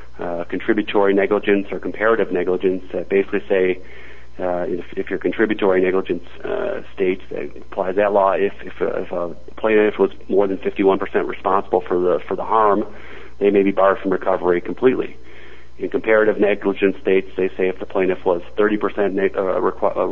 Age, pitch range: 30-49, 90-105 Hz